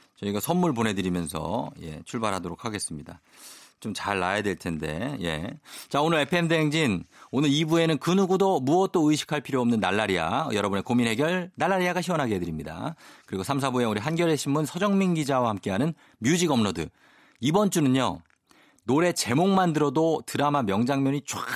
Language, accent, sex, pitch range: Korean, native, male, 100-155 Hz